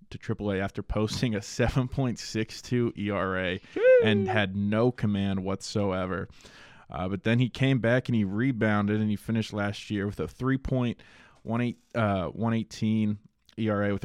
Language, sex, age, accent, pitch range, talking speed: English, male, 20-39, American, 100-120 Hz, 135 wpm